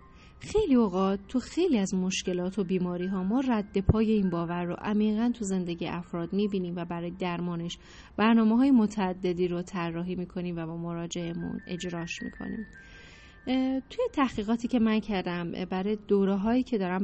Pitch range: 180-220 Hz